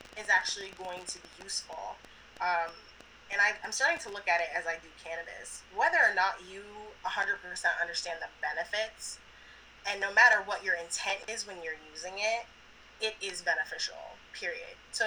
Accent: American